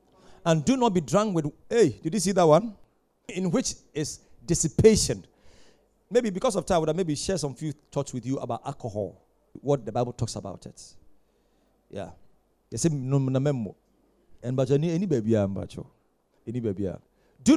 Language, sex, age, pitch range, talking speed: English, male, 40-59, 130-195 Hz, 135 wpm